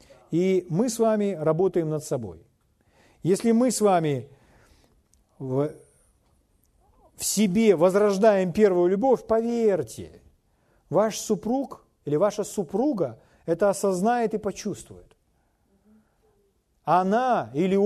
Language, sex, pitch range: Russian, male, 155-215 Hz